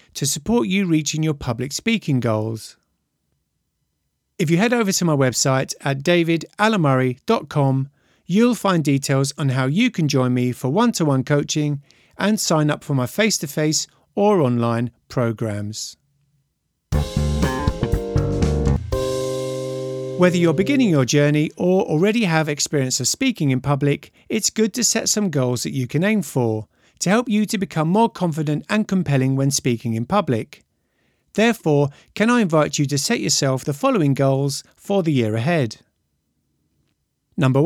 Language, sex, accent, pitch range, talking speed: English, male, British, 130-190 Hz, 145 wpm